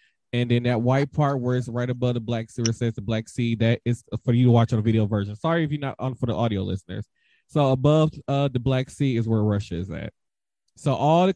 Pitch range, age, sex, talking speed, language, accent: 115-140 Hz, 20-39, male, 270 wpm, English, American